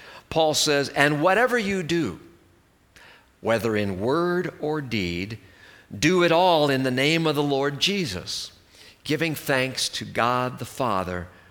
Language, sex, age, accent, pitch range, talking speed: English, male, 50-69, American, 105-175 Hz, 140 wpm